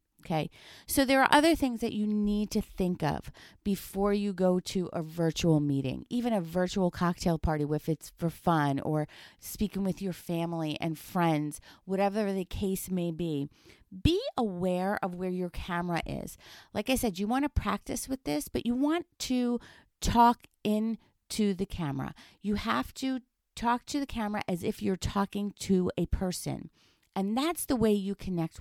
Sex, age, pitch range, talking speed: female, 40-59, 180-240 Hz, 180 wpm